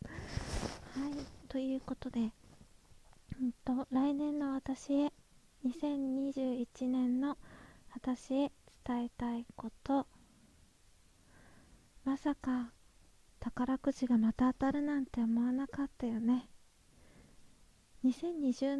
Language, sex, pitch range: Japanese, female, 245-280 Hz